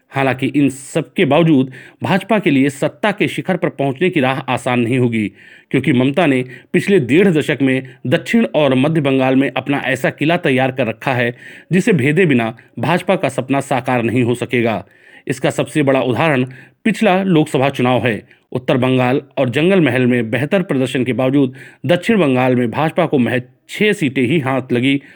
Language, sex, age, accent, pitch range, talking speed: Hindi, male, 40-59, native, 130-160 Hz, 180 wpm